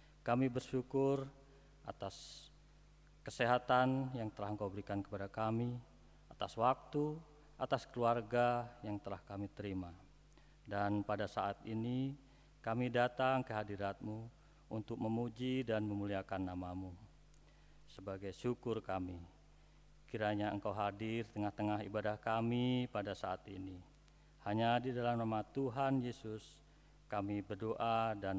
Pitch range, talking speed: 100-130 Hz, 110 wpm